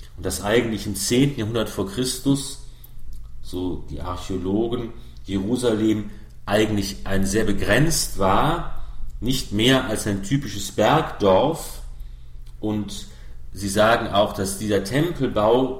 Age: 40-59